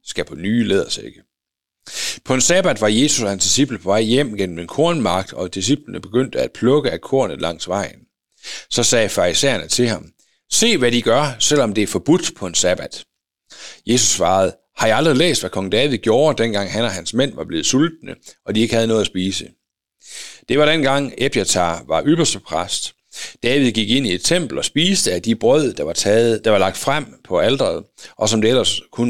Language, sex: Danish, male